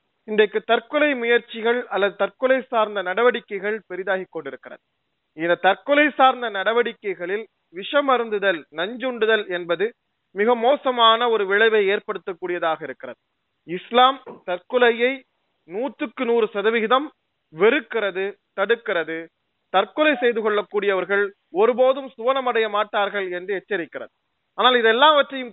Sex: male